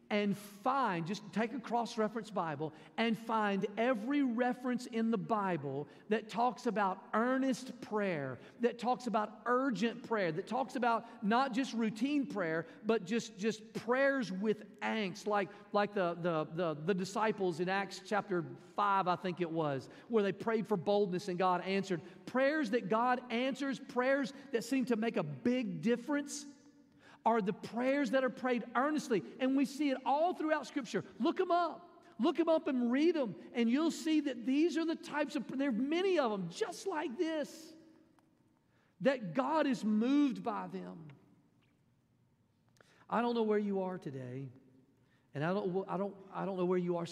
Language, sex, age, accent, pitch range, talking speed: English, male, 40-59, American, 185-260 Hz, 175 wpm